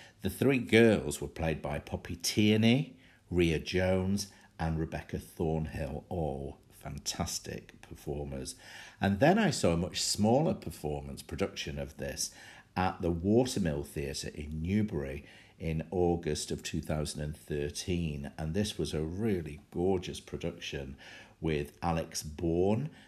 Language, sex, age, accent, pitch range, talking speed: English, male, 50-69, British, 75-100 Hz, 120 wpm